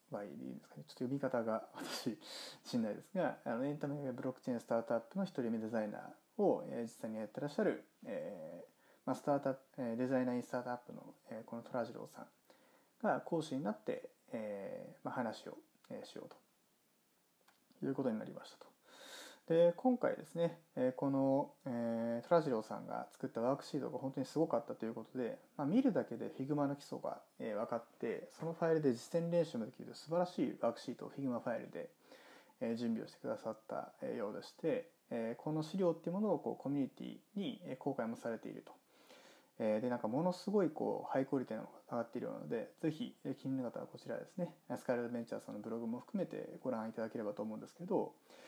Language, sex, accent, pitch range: Japanese, male, native, 120-175 Hz